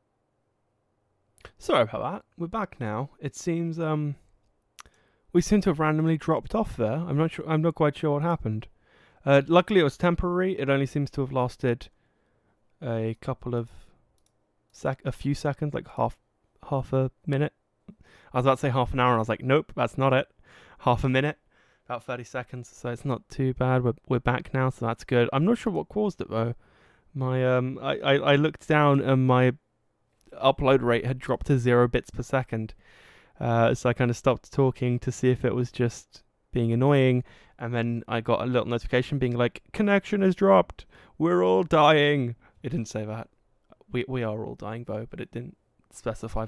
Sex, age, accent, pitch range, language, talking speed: male, 20-39, British, 115-140 Hz, English, 195 wpm